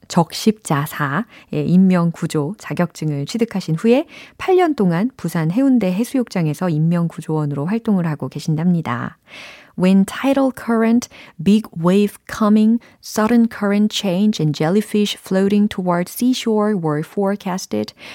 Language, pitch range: Korean, 160-225 Hz